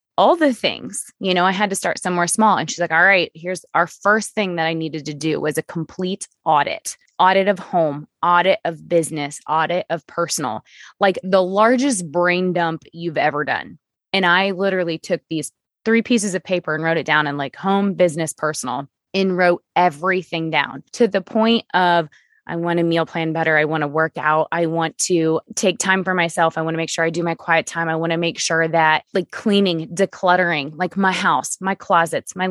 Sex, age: female, 20-39